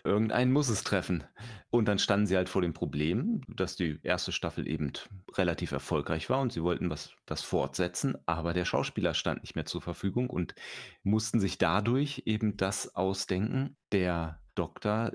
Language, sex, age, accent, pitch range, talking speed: German, male, 40-59, German, 80-100 Hz, 165 wpm